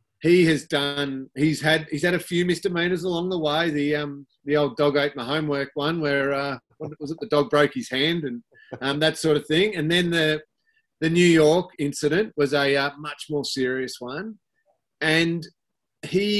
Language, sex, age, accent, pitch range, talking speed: English, male, 30-49, Australian, 130-165 Hz, 200 wpm